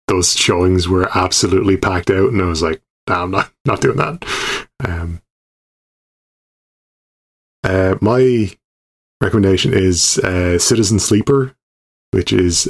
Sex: male